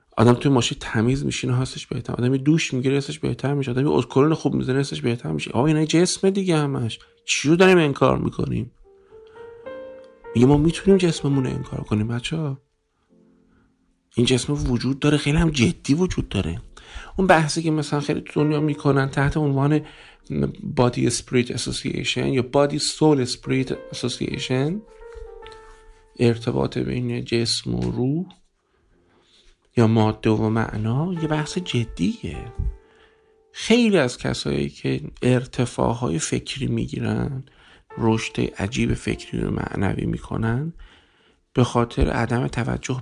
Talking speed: 130 wpm